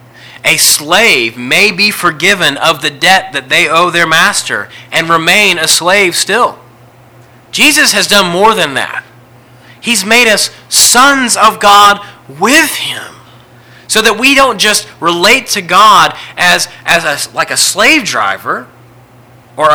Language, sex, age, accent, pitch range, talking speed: English, male, 30-49, American, 145-205 Hz, 145 wpm